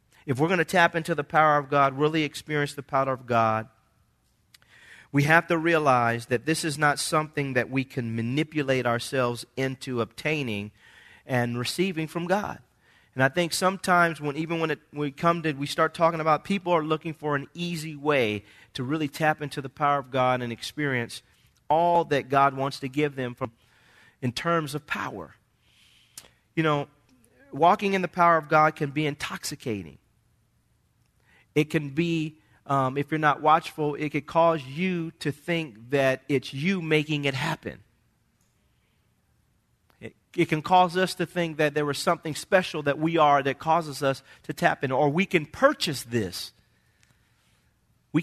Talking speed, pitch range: 175 wpm, 135-170 Hz